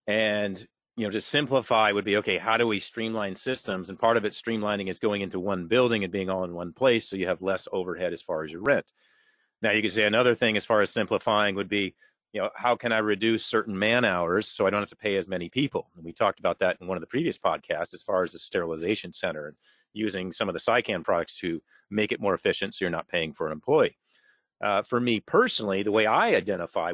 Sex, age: male, 40-59